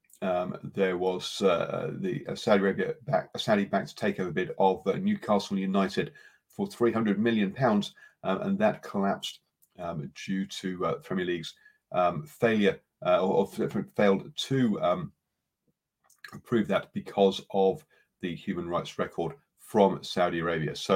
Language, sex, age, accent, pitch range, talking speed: English, male, 40-59, British, 95-135 Hz, 140 wpm